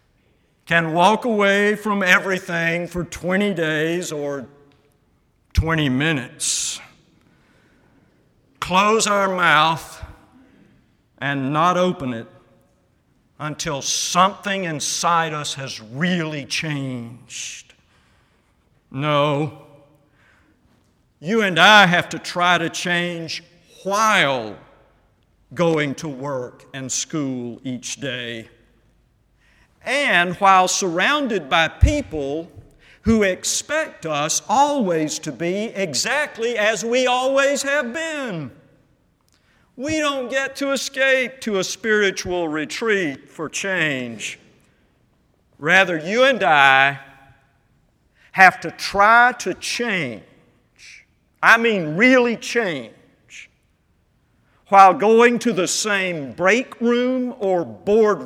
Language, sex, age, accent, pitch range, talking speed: English, male, 50-69, American, 140-210 Hz, 95 wpm